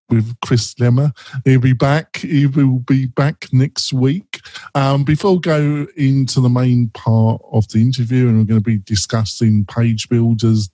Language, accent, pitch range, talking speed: English, British, 115-135 Hz, 180 wpm